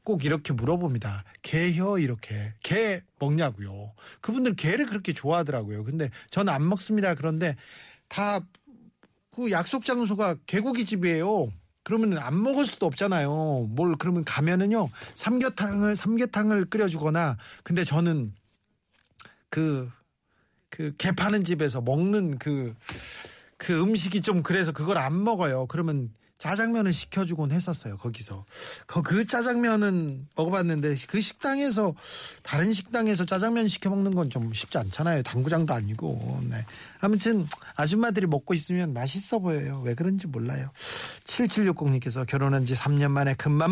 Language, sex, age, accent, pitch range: Korean, male, 40-59, native, 135-200 Hz